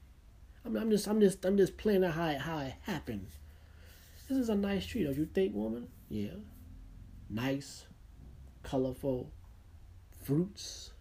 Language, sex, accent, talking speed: English, male, American, 140 wpm